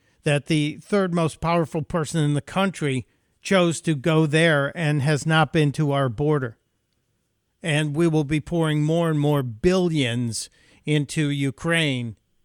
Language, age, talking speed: English, 50-69, 150 wpm